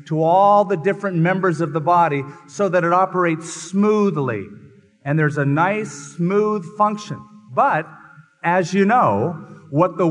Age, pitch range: 40-59, 145-195 Hz